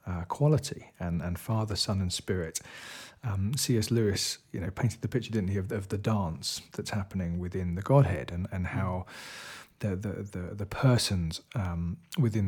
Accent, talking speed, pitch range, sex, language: British, 180 wpm, 95-120 Hz, male, English